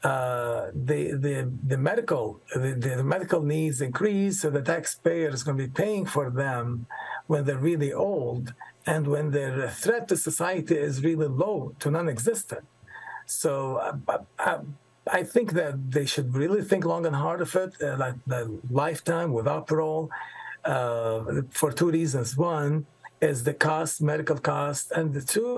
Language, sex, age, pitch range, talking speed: English, male, 50-69, 130-160 Hz, 155 wpm